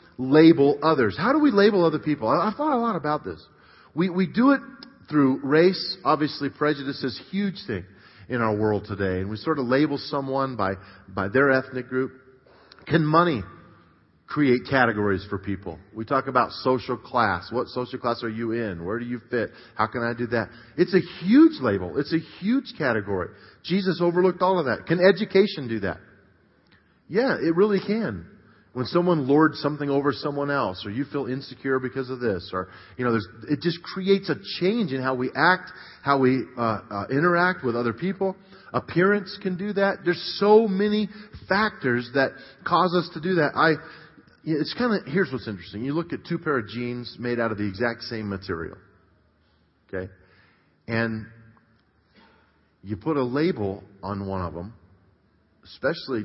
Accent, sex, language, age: American, male, English, 40-59